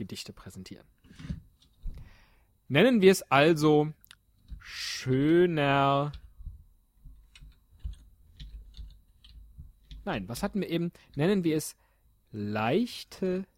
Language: German